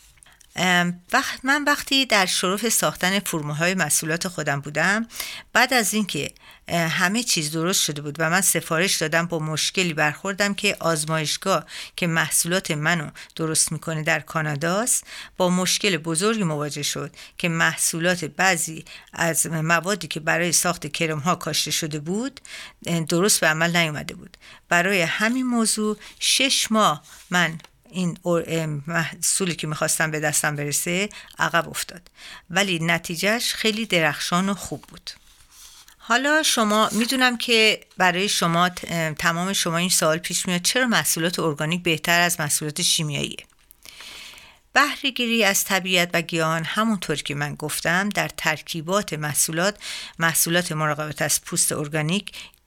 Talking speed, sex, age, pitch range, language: 130 wpm, female, 50-69, 160-200 Hz, Persian